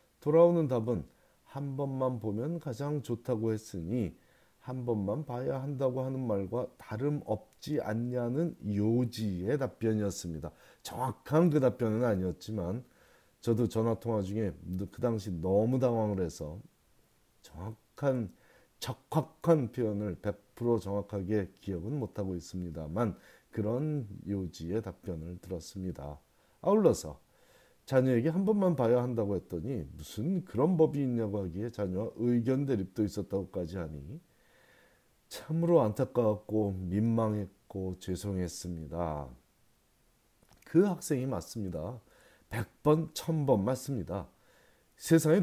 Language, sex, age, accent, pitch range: Korean, male, 40-59, native, 95-130 Hz